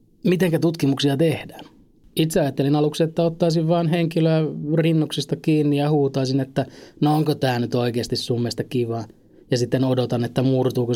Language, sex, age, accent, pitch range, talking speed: Finnish, male, 20-39, native, 115-145 Hz, 155 wpm